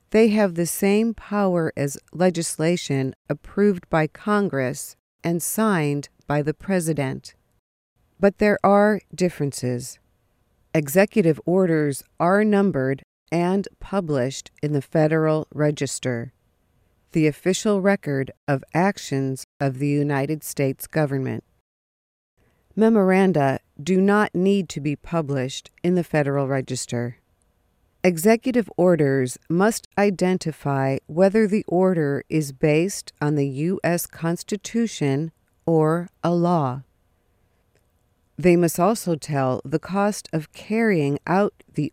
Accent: American